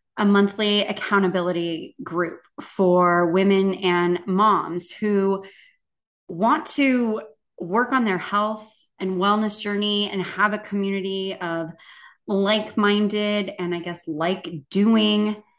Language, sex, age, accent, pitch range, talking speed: English, female, 20-39, American, 175-215 Hz, 110 wpm